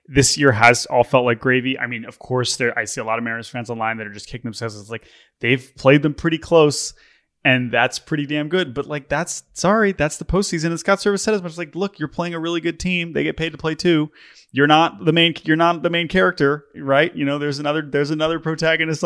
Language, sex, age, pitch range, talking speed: English, male, 20-39, 115-150 Hz, 260 wpm